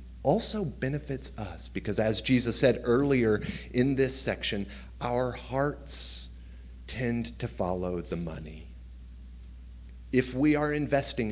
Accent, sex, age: American, male, 30-49